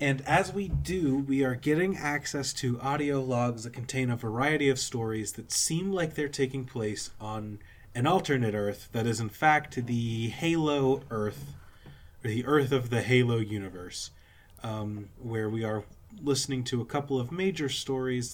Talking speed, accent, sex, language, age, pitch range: 165 wpm, American, male, English, 30-49, 110-145 Hz